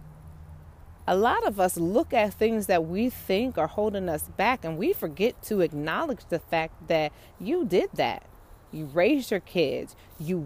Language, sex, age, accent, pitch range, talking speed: English, female, 30-49, American, 150-210 Hz, 170 wpm